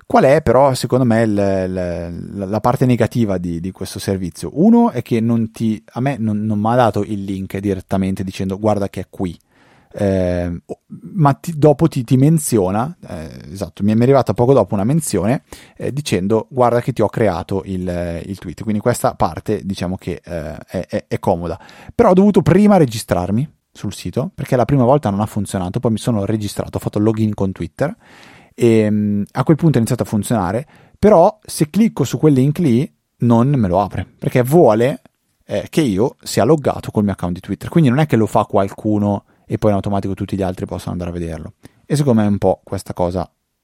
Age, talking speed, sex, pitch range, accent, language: 30-49, 205 wpm, male, 95-120 Hz, native, Italian